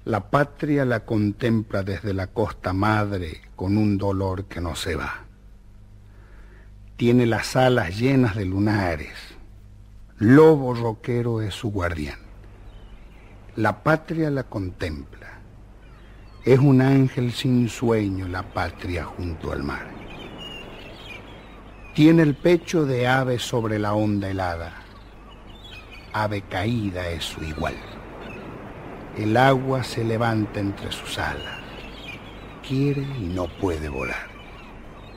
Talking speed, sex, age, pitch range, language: 115 wpm, male, 60-79, 100-125 Hz, Spanish